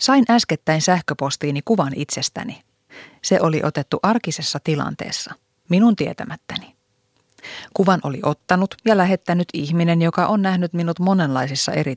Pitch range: 145-195 Hz